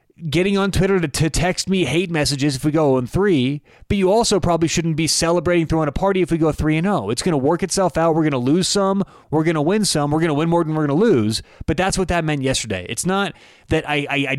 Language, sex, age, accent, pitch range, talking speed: English, male, 30-49, American, 130-175 Hz, 280 wpm